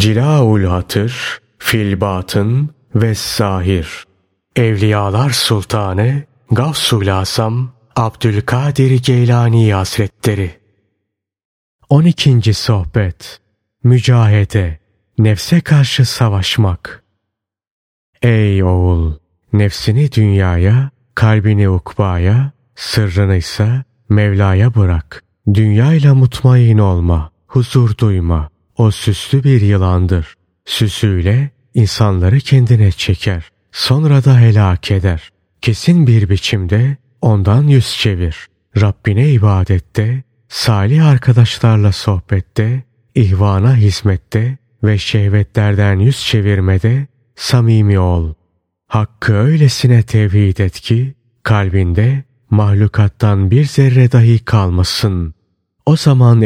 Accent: native